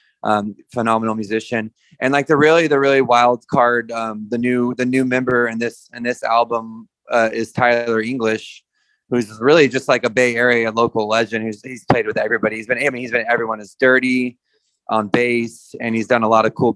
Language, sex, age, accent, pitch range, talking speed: English, male, 20-39, American, 115-130 Hz, 210 wpm